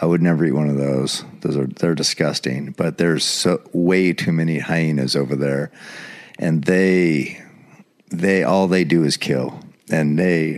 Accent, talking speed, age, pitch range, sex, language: American, 170 wpm, 40-59, 80-100 Hz, male, English